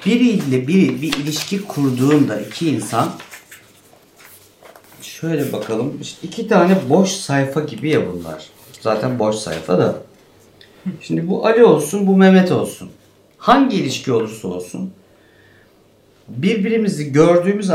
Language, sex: Turkish, male